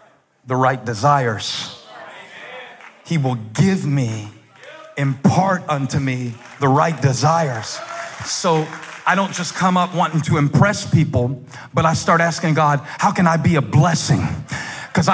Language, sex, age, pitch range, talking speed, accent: English, male, 40-59, 145-200 Hz, 140 wpm, American